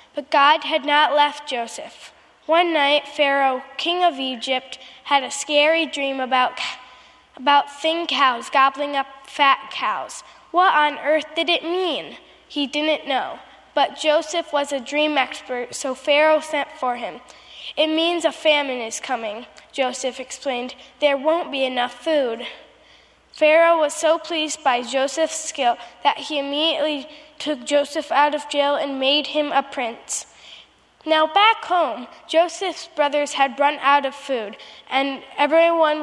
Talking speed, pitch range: 155 wpm, 270-310 Hz